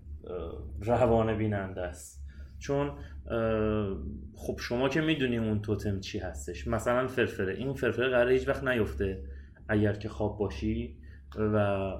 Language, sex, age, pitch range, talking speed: Persian, male, 30-49, 95-125 Hz, 120 wpm